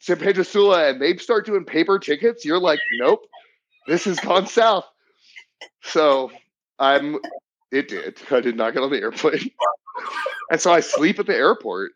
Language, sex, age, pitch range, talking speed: English, male, 30-49, 120-195 Hz, 170 wpm